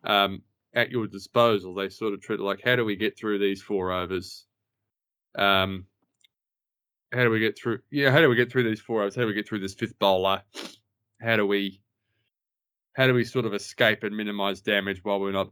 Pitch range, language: 100-115 Hz, English